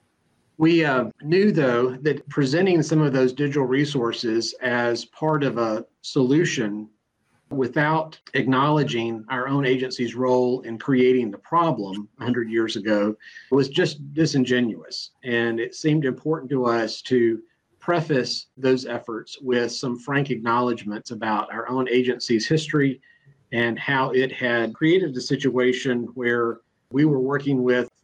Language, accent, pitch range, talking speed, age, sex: English, American, 120-140 Hz, 135 wpm, 40-59, male